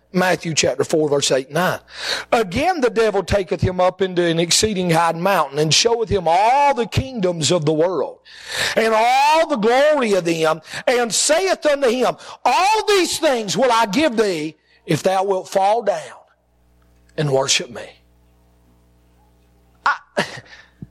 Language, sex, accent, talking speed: English, male, American, 150 wpm